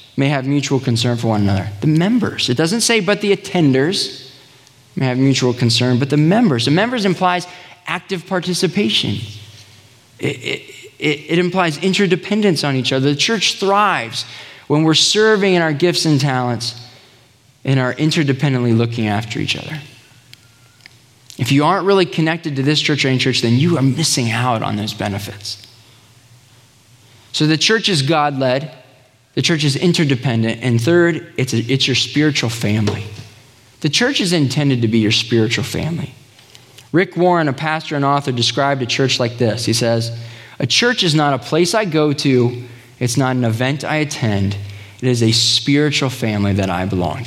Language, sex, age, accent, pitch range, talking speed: English, male, 20-39, American, 120-155 Hz, 170 wpm